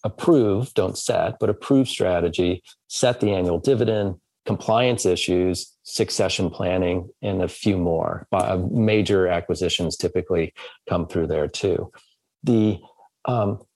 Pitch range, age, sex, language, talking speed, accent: 95-125 Hz, 40-59, male, English, 120 wpm, American